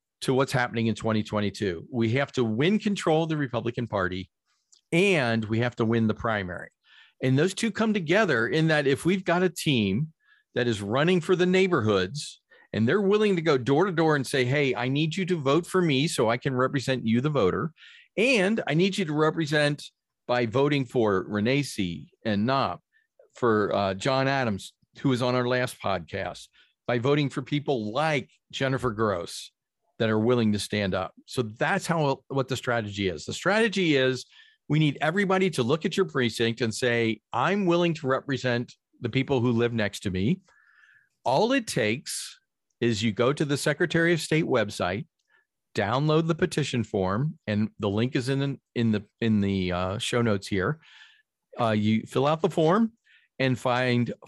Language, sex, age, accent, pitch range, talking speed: English, male, 40-59, American, 115-165 Hz, 185 wpm